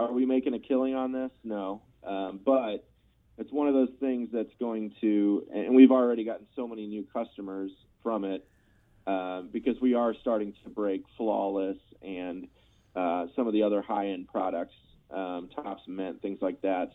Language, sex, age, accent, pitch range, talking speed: English, male, 30-49, American, 95-120 Hz, 180 wpm